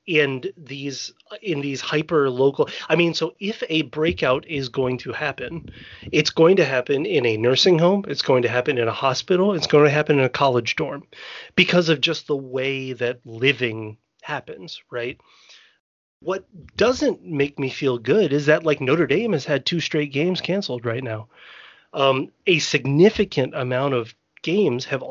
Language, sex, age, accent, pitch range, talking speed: English, male, 30-49, American, 125-160 Hz, 175 wpm